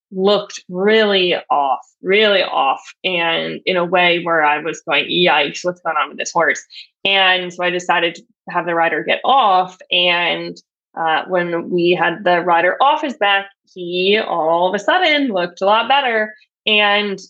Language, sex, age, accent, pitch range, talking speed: English, female, 20-39, American, 180-210 Hz, 175 wpm